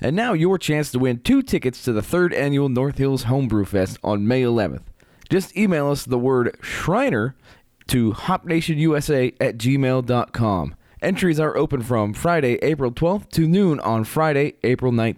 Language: English